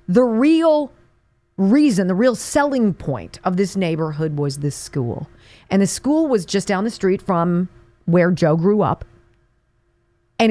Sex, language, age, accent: female, English, 40-59, American